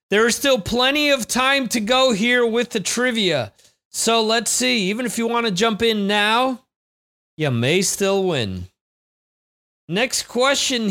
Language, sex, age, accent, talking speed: English, male, 40-59, American, 160 wpm